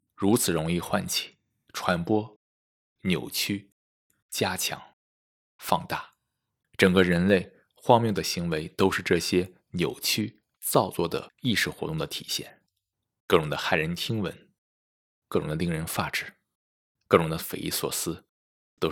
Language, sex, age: Chinese, male, 20-39